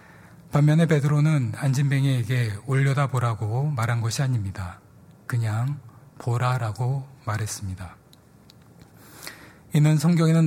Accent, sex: native, male